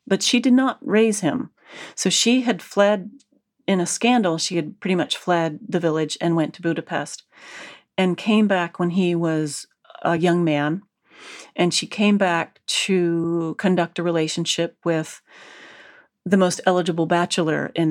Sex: female